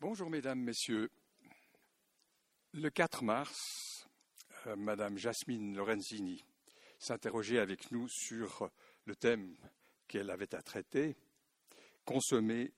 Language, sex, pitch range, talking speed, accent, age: French, male, 110-140 Hz, 95 wpm, French, 60-79